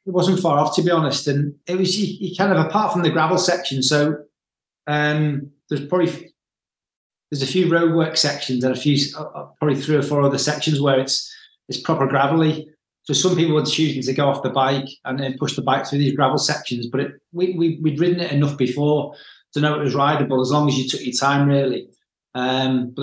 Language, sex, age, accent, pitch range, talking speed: English, male, 30-49, British, 135-155 Hz, 225 wpm